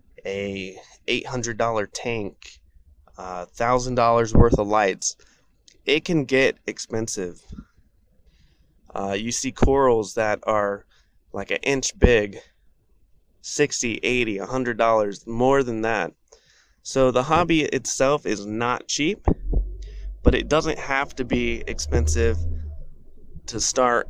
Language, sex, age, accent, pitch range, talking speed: English, male, 20-39, American, 85-135 Hz, 105 wpm